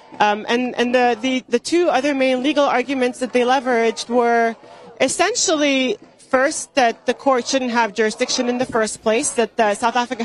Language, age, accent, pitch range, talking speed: English, 30-49, American, 190-245 Hz, 175 wpm